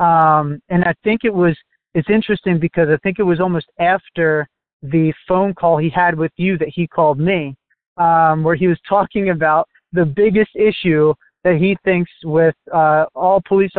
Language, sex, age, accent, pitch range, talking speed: English, male, 20-39, American, 155-175 Hz, 185 wpm